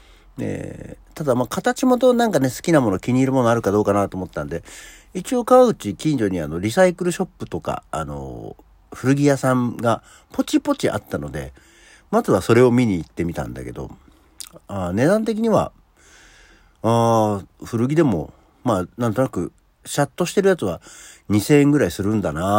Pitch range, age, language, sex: 90-140 Hz, 60-79, Japanese, male